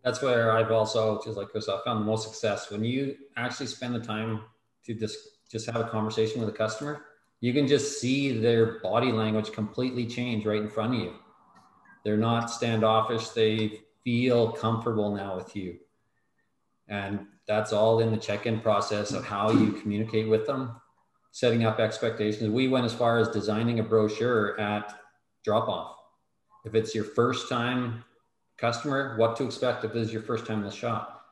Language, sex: English, male